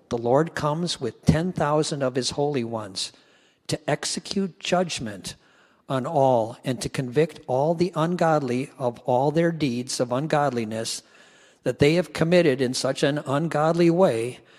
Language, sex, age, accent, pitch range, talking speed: English, male, 50-69, American, 125-155 Hz, 150 wpm